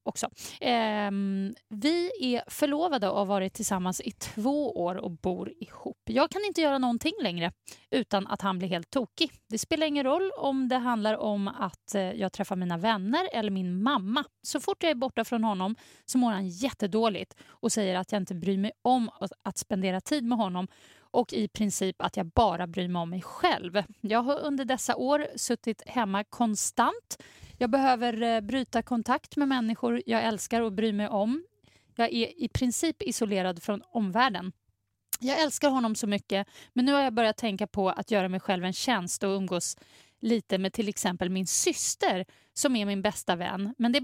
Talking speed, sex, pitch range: 190 wpm, female, 195-255 Hz